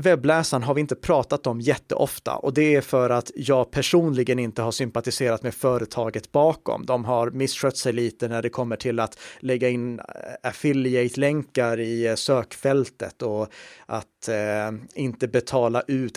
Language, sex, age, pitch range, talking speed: Swedish, male, 30-49, 120-145 Hz, 150 wpm